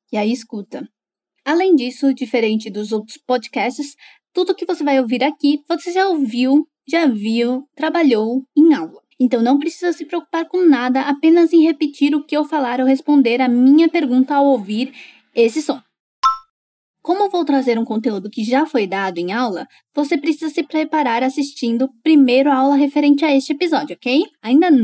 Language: Japanese